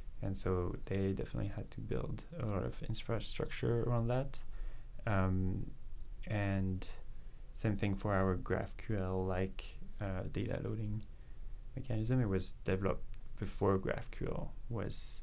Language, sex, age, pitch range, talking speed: English, male, 20-39, 95-115 Hz, 120 wpm